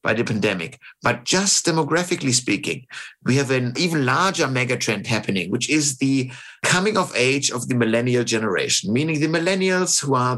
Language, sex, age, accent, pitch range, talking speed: English, male, 60-79, German, 130-165 Hz, 160 wpm